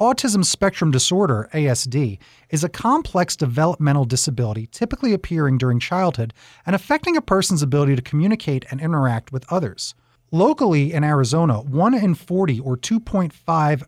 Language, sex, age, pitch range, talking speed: English, male, 30-49, 125-185 Hz, 130 wpm